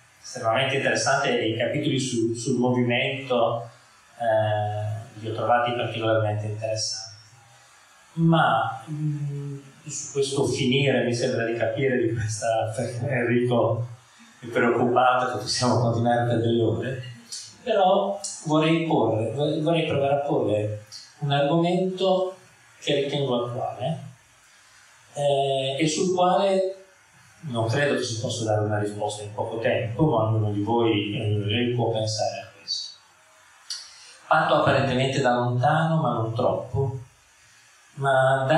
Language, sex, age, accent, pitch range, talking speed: Italian, male, 30-49, native, 110-140 Hz, 125 wpm